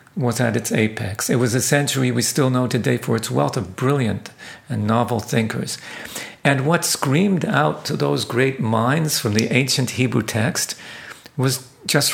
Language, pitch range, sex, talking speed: English, 115-145 Hz, male, 175 wpm